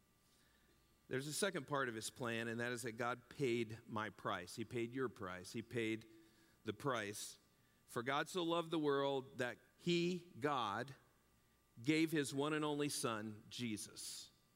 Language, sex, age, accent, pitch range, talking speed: English, male, 50-69, American, 125-185 Hz, 160 wpm